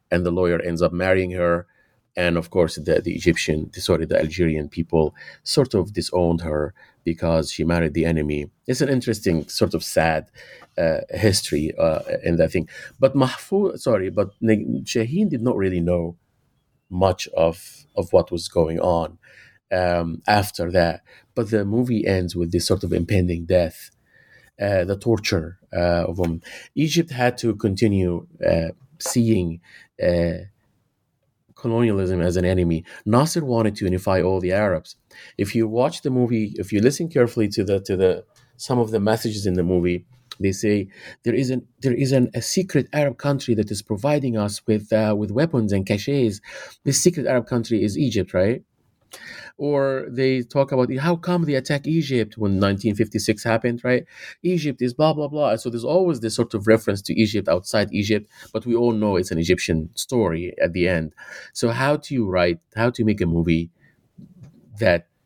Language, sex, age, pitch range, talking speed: English, male, 30-49, 90-125 Hz, 175 wpm